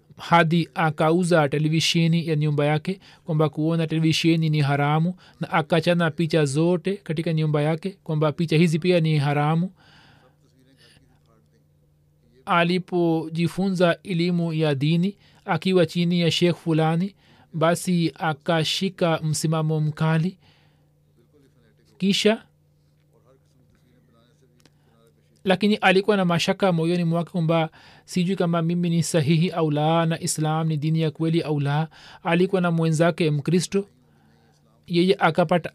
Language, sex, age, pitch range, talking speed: Swahili, male, 40-59, 155-175 Hz, 105 wpm